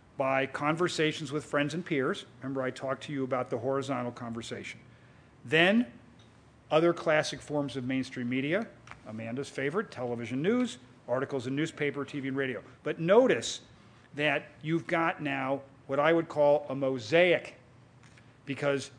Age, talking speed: 40-59, 140 wpm